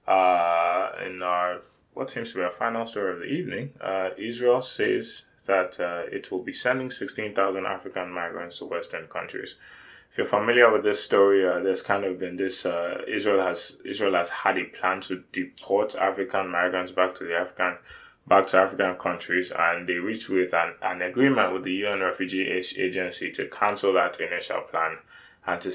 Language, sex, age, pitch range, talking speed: English, male, 20-39, 90-100 Hz, 185 wpm